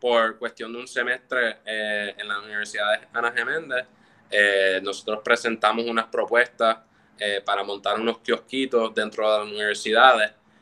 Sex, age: male, 20-39